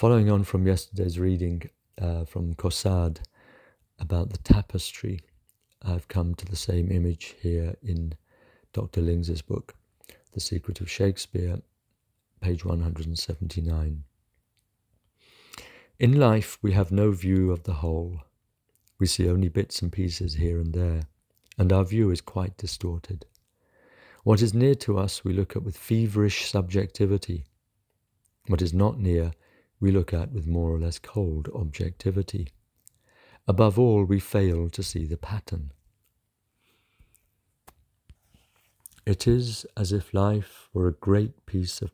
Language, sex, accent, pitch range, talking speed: English, male, British, 85-105 Hz, 135 wpm